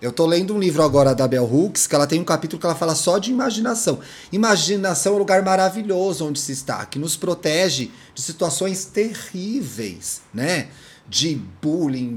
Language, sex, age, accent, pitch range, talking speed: Portuguese, male, 30-49, Brazilian, 130-180 Hz, 185 wpm